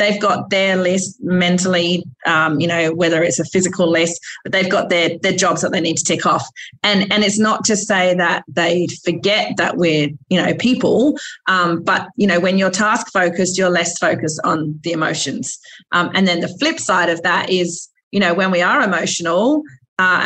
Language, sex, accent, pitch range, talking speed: English, female, Australian, 165-205 Hz, 200 wpm